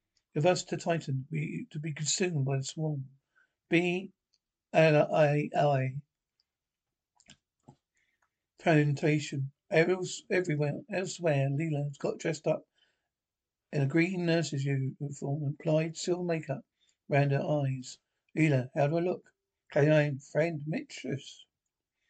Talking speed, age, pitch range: 115 wpm, 60-79, 145-170 Hz